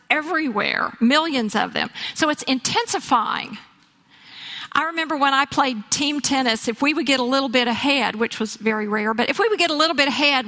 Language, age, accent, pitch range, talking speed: English, 50-69, American, 230-290 Hz, 200 wpm